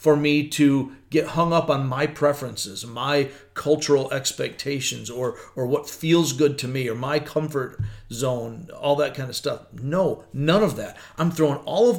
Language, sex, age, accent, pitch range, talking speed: English, male, 40-59, American, 120-155 Hz, 180 wpm